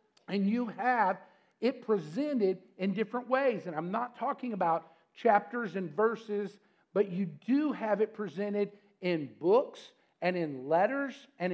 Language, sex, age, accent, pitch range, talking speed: English, male, 50-69, American, 190-245 Hz, 145 wpm